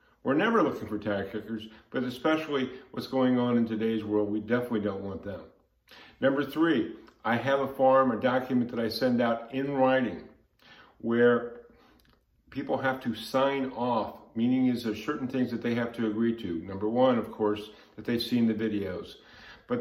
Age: 50-69